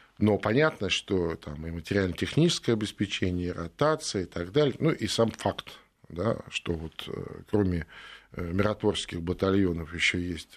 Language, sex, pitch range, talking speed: Russian, male, 90-110 Hz, 135 wpm